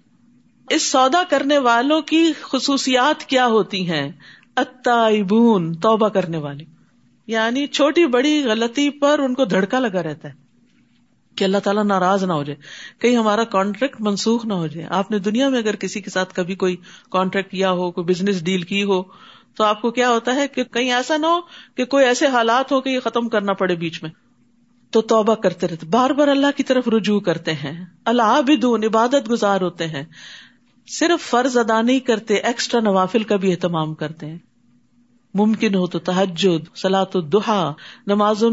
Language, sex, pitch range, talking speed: Urdu, female, 190-265 Hz, 180 wpm